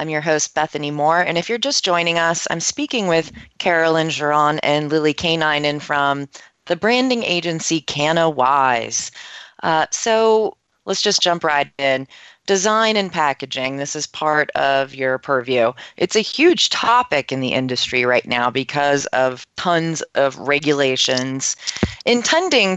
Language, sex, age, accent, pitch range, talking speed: English, female, 30-49, American, 135-175 Hz, 150 wpm